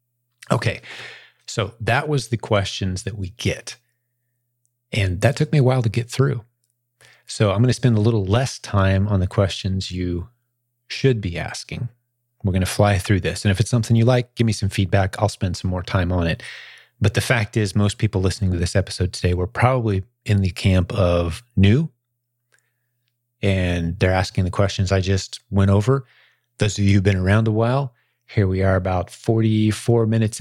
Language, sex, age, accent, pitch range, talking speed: English, male, 30-49, American, 100-120 Hz, 190 wpm